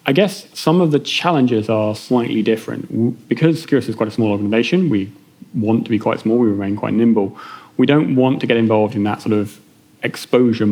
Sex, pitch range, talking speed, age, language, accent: male, 105-120 Hz, 205 wpm, 30-49, English, British